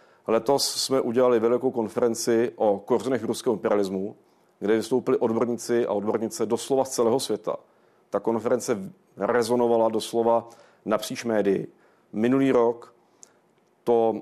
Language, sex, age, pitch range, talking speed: Czech, male, 40-59, 115-130 Hz, 120 wpm